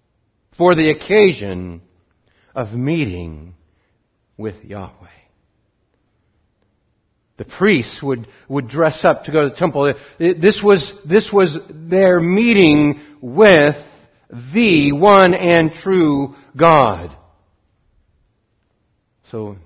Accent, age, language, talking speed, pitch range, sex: American, 60-79, English, 90 wpm, 110-155 Hz, male